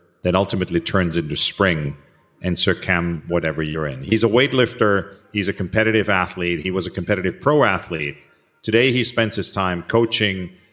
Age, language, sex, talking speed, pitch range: 40-59, English, male, 170 wpm, 85-110 Hz